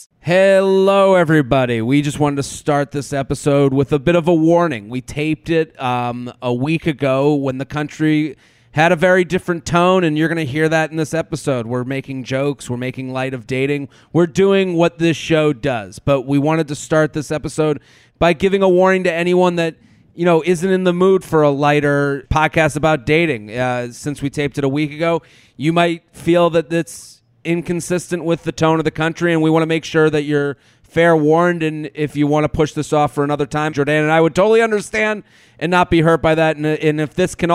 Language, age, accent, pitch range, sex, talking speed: English, 30-49, American, 140-165 Hz, male, 220 wpm